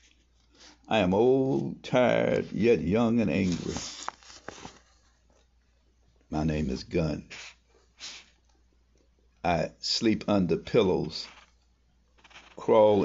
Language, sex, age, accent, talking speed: English, male, 60-79, American, 80 wpm